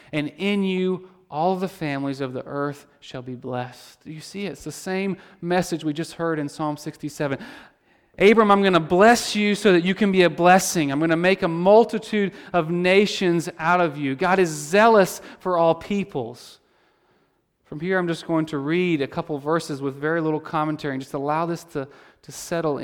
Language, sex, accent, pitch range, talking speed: English, male, American, 145-175 Hz, 200 wpm